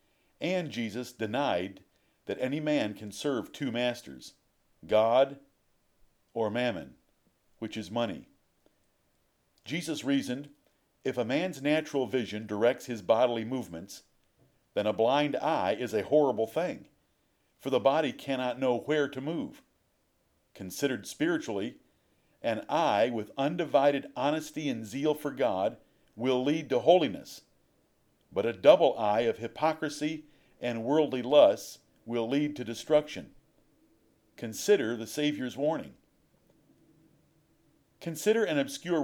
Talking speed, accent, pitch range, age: 120 wpm, American, 115-150 Hz, 50-69